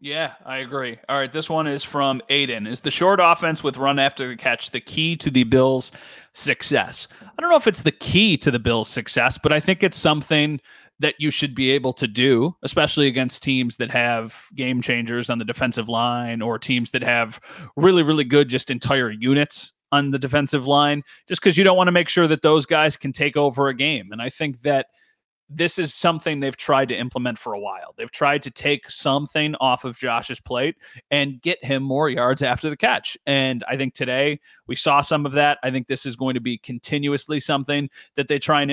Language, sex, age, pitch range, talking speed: English, male, 30-49, 130-150 Hz, 220 wpm